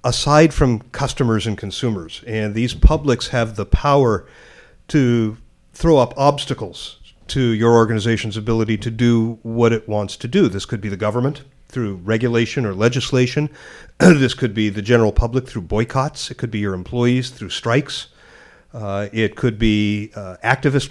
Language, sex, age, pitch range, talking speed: English, male, 50-69, 110-130 Hz, 160 wpm